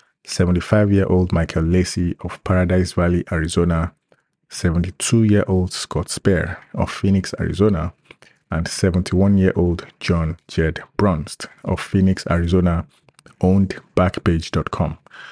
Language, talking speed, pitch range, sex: English, 90 wpm, 85-105 Hz, male